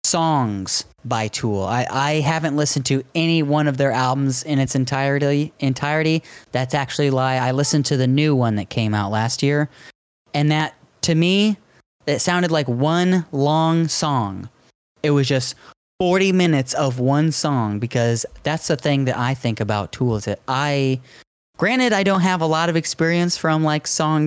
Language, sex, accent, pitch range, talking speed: English, male, American, 125-160 Hz, 175 wpm